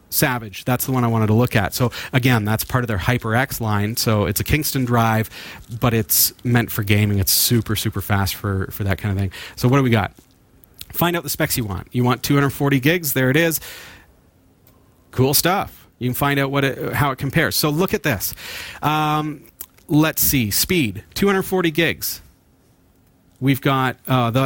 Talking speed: 195 wpm